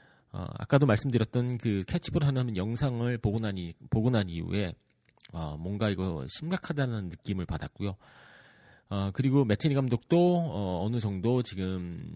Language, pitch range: Korean, 95-135 Hz